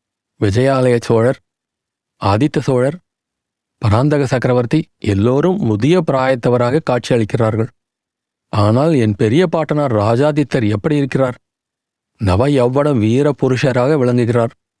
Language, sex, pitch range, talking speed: Tamil, male, 120-145 Hz, 85 wpm